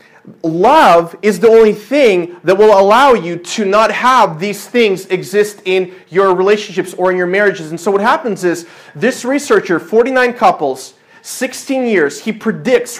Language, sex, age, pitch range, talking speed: English, male, 30-49, 180-225 Hz, 160 wpm